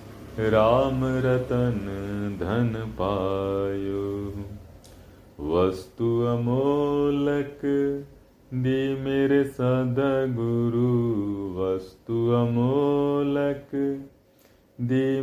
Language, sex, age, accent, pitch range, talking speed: Hindi, male, 40-59, native, 105-135 Hz, 45 wpm